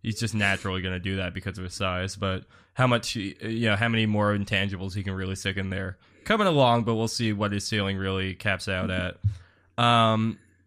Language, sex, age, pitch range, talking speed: English, male, 10-29, 95-115 Hz, 220 wpm